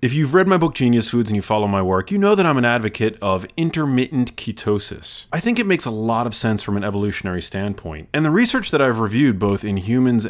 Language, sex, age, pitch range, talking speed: English, male, 30-49, 100-130 Hz, 245 wpm